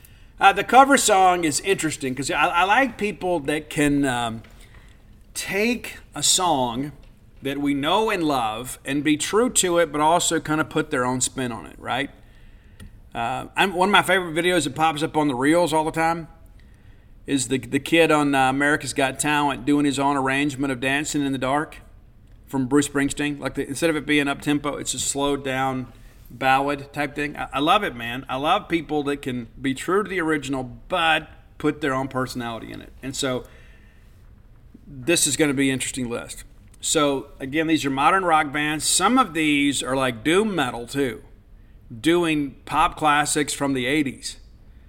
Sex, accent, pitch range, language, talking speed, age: male, American, 125-155 Hz, English, 185 wpm, 40-59